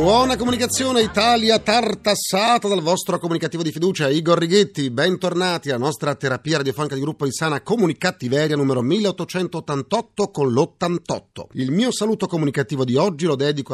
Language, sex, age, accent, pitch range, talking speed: Italian, male, 40-59, native, 125-190 Hz, 145 wpm